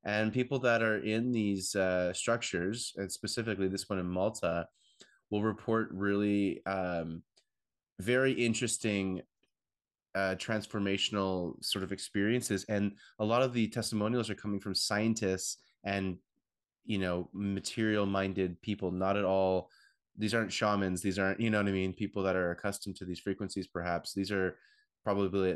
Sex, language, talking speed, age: male, English, 150 wpm, 20-39